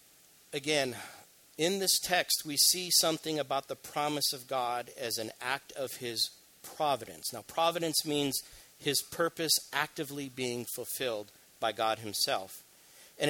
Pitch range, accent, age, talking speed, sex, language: 120-160 Hz, American, 50-69, 135 wpm, male, English